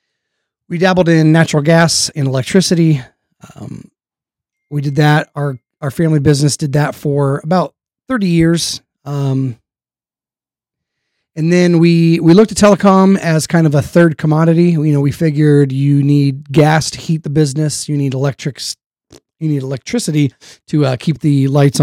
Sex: male